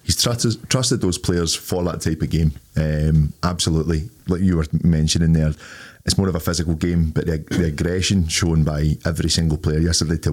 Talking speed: 200 wpm